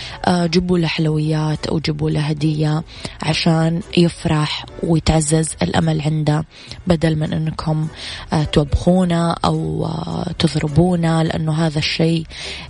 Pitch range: 155-170 Hz